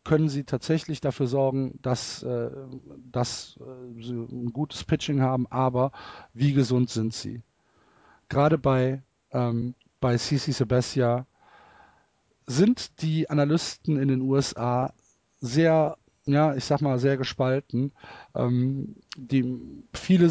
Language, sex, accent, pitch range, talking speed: German, male, German, 120-140 Hz, 115 wpm